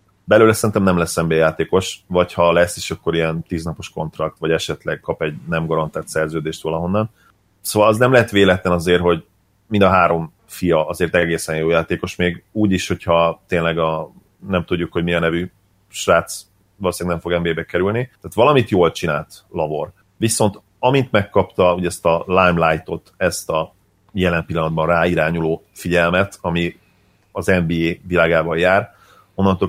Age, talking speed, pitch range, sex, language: 30-49, 160 wpm, 85-95 Hz, male, Hungarian